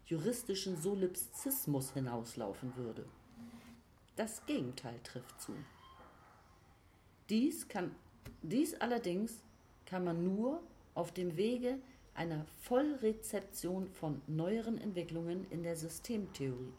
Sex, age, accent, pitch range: female, 40-59, German, 130-200 Hz